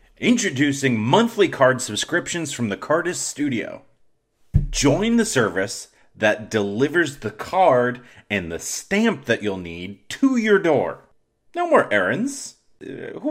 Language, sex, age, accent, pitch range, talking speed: English, male, 30-49, American, 105-165 Hz, 130 wpm